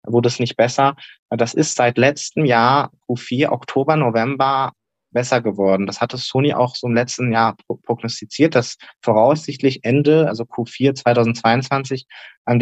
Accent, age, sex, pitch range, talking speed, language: German, 20-39, male, 110-125 Hz, 140 wpm, German